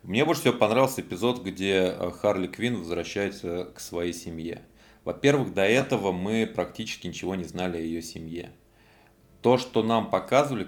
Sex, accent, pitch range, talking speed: male, native, 85-115 Hz, 150 wpm